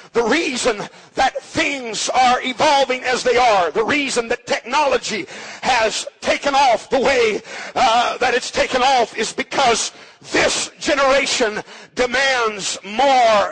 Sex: male